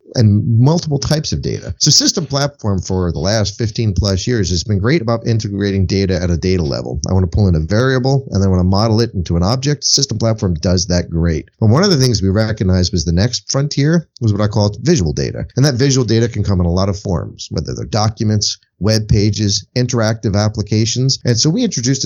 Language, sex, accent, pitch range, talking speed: English, male, American, 95-130 Hz, 230 wpm